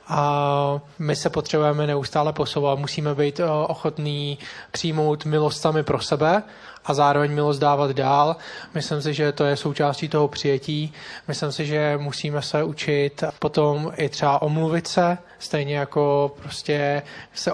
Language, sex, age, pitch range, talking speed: Slovak, male, 20-39, 140-150 Hz, 135 wpm